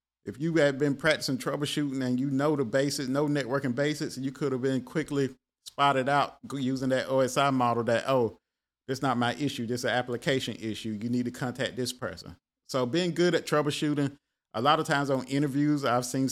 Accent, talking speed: American, 200 wpm